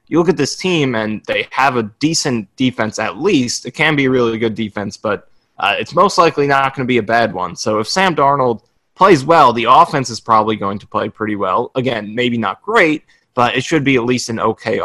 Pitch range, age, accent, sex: 110-130 Hz, 20-39, American, male